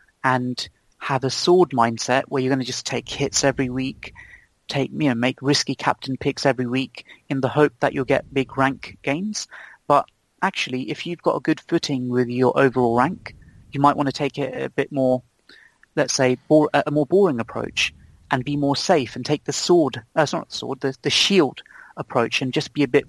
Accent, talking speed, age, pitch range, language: British, 215 wpm, 30-49, 130-150 Hz, English